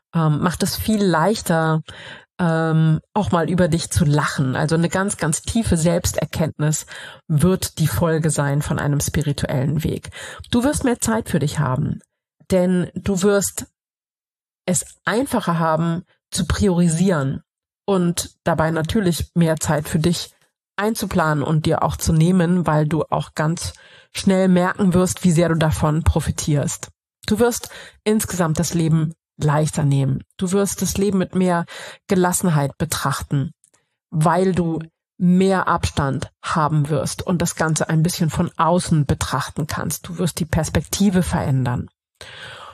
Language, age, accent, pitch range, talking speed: German, 30-49, German, 155-190 Hz, 140 wpm